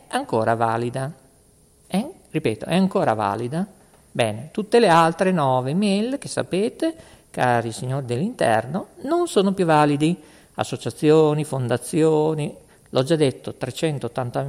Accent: native